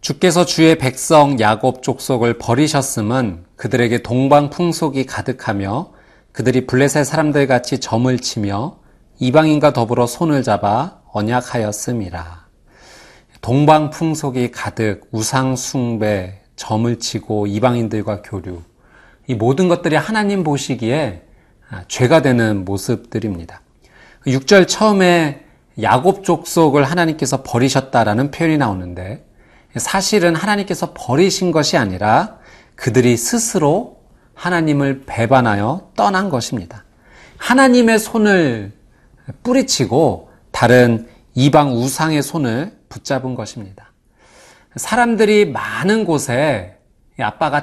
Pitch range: 115-160 Hz